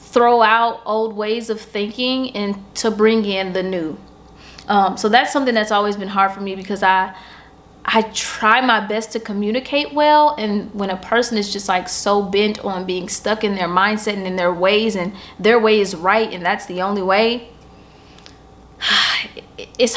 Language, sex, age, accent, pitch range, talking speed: English, female, 20-39, American, 205-260 Hz, 185 wpm